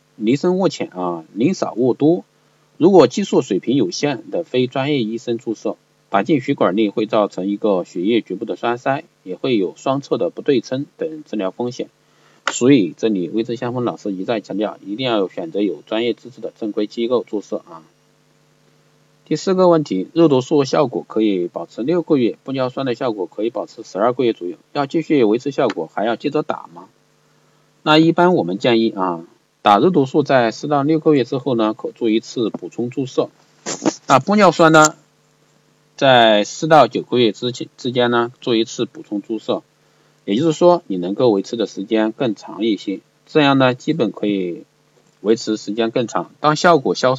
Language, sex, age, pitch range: Chinese, male, 50-69, 110-155 Hz